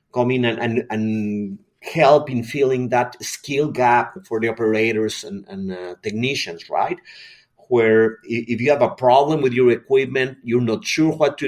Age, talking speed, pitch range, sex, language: 30-49, 170 wpm, 110-135 Hz, male, English